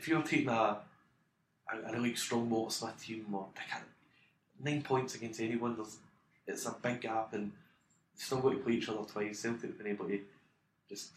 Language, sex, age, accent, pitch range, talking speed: English, male, 20-39, British, 100-115 Hz, 185 wpm